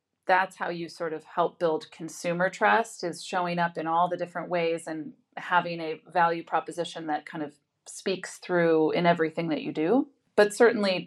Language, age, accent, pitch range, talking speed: English, 30-49, American, 165-185 Hz, 185 wpm